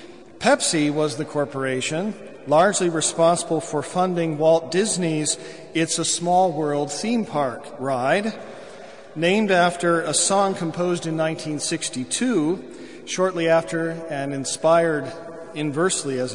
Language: English